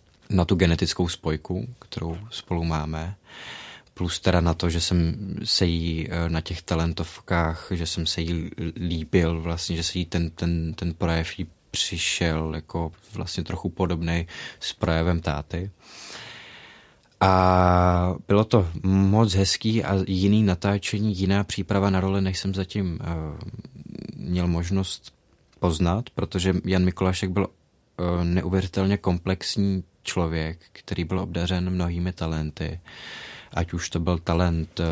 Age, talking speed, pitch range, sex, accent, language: 20-39, 130 wpm, 85-95 Hz, male, Slovak, Czech